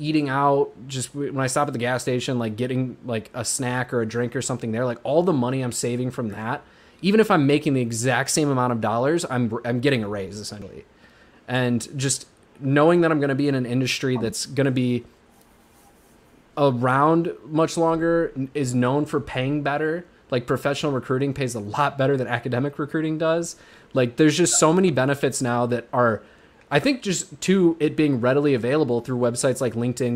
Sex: male